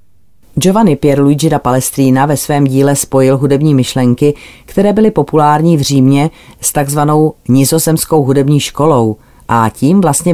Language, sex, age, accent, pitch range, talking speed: Czech, female, 30-49, native, 125-150 Hz, 135 wpm